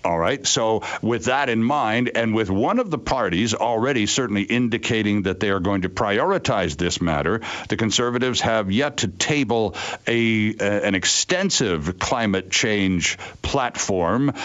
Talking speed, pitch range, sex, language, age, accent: 155 wpm, 100-125 Hz, male, English, 60-79, American